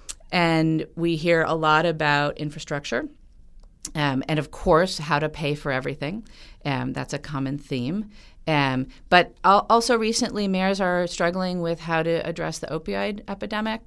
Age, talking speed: 40-59, 145 wpm